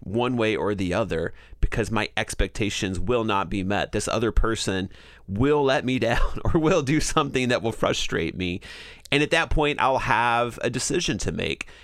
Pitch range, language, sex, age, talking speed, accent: 95-120 Hz, English, male, 30-49, 190 wpm, American